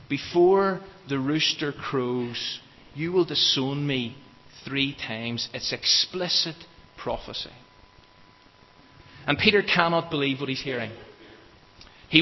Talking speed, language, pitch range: 105 wpm, English, 120-165 Hz